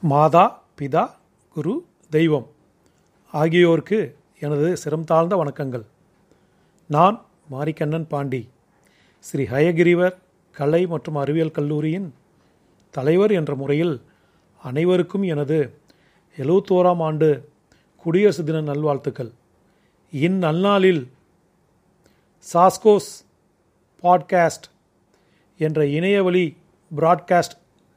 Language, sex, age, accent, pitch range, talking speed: Tamil, male, 40-59, native, 150-185 Hz, 75 wpm